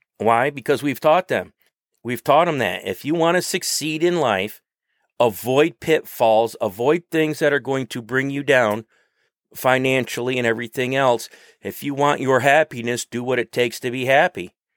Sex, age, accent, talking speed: male, 40-59, American, 175 wpm